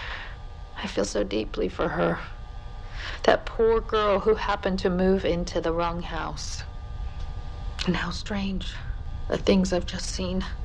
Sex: female